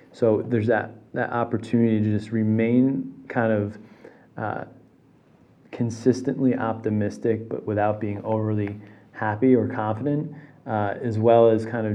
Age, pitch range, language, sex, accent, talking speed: 30-49, 105-115 Hz, English, male, American, 130 wpm